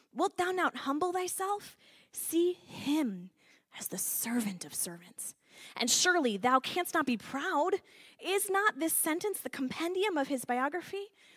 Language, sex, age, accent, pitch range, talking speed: English, female, 20-39, American, 200-295 Hz, 150 wpm